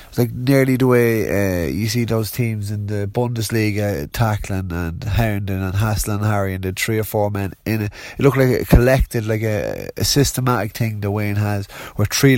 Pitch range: 100-120 Hz